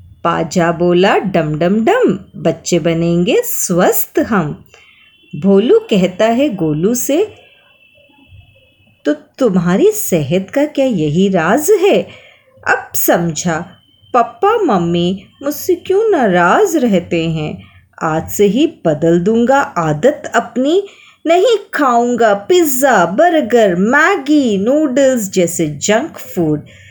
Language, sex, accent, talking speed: Hindi, female, native, 105 wpm